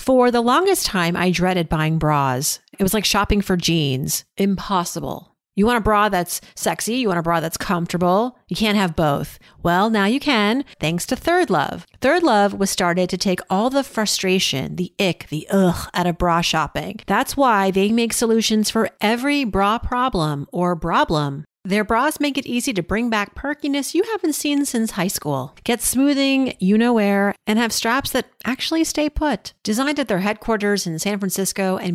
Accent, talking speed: American, 190 wpm